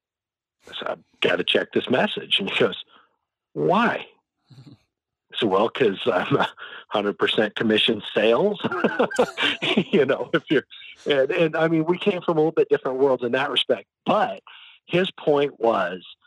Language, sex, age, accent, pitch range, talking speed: English, male, 40-59, American, 100-145 Hz, 155 wpm